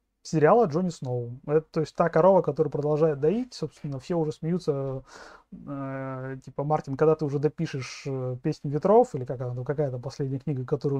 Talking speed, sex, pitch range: 155 wpm, male, 130-160 Hz